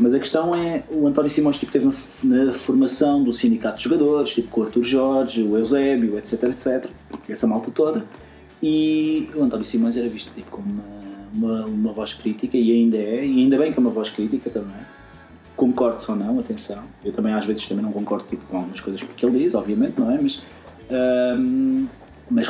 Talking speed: 205 wpm